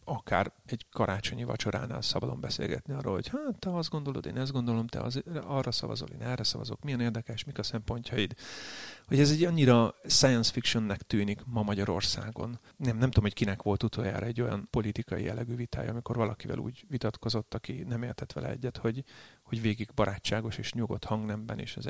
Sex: male